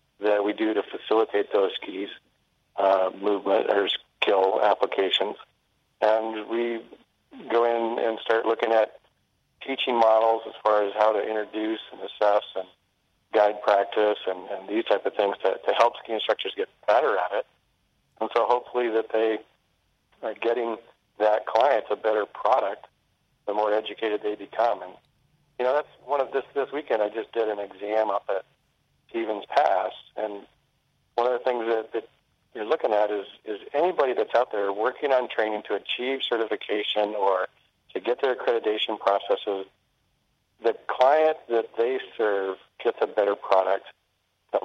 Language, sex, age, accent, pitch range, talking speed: English, male, 50-69, American, 105-120 Hz, 165 wpm